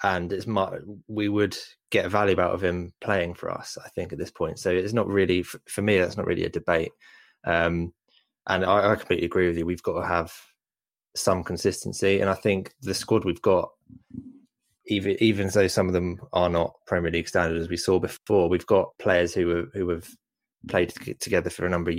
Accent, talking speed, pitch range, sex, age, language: British, 210 wpm, 85-95 Hz, male, 20-39, English